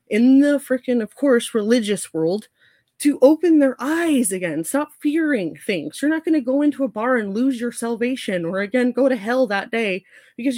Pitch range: 200-265 Hz